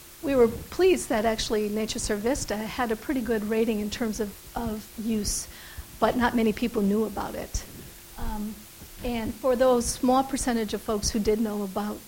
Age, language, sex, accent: 50-69, English, female, American